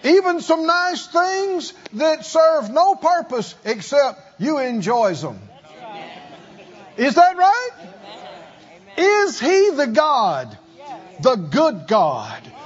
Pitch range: 185-295 Hz